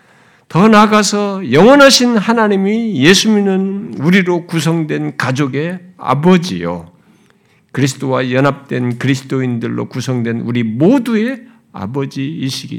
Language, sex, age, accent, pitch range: Korean, male, 50-69, native, 140-225 Hz